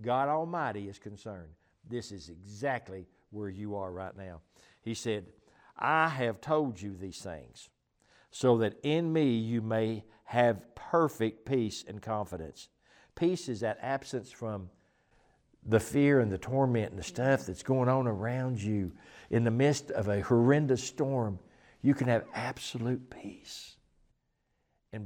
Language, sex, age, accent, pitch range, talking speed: English, male, 60-79, American, 105-140 Hz, 150 wpm